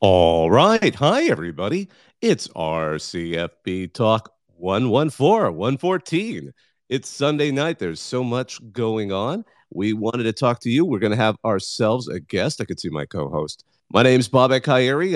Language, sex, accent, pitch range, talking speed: English, male, American, 105-150 Hz, 160 wpm